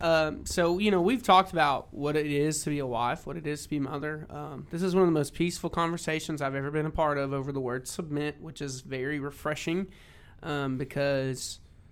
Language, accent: English, American